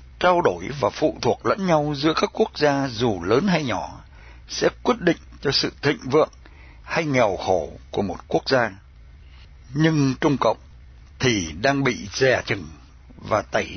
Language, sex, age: Vietnamese, male, 60-79